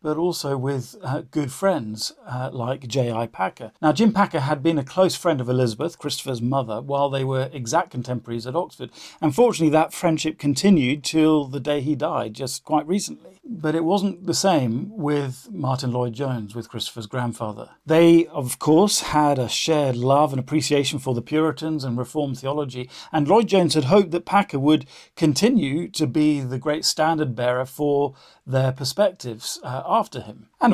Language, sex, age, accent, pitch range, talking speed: English, male, 50-69, British, 130-160 Hz, 175 wpm